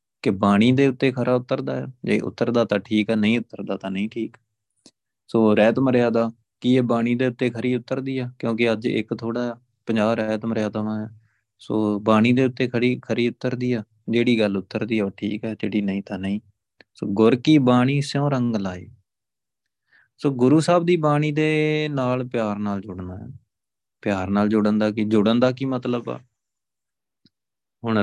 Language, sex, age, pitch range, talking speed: Punjabi, male, 20-39, 105-125 Hz, 180 wpm